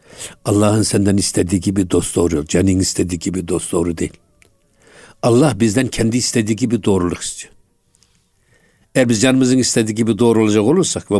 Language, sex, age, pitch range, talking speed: Turkish, male, 60-79, 100-130 Hz, 140 wpm